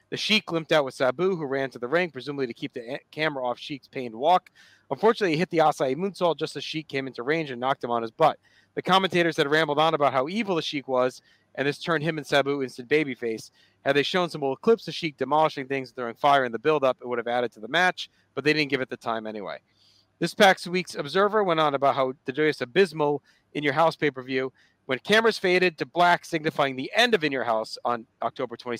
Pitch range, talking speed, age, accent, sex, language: 130-170 Hz, 245 wpm, 40-59, American, male, English